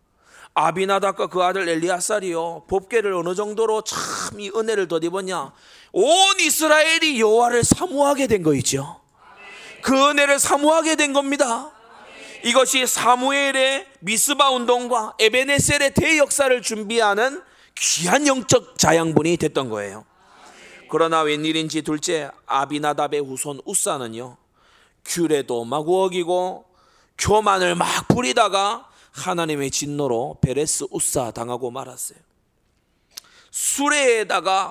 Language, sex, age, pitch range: Korean, male, 30-49, 180-285 Hz